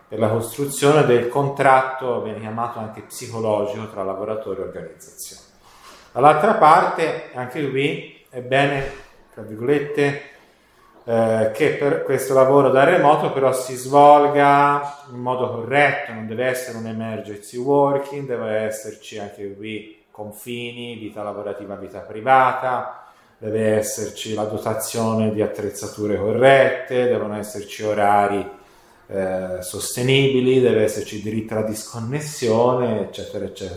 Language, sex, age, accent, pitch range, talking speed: Italian, male, 30-49, native, 110-135 Hz, 120 wpm